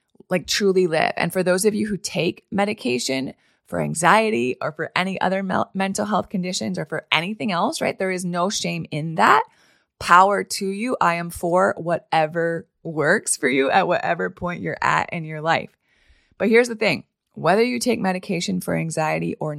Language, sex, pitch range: English, female, 165-205 Hz